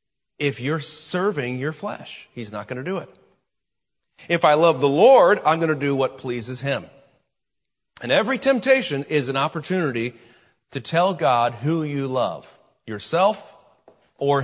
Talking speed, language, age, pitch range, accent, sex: 155 wpm, English, 40-59, 135-200 Hz, American, male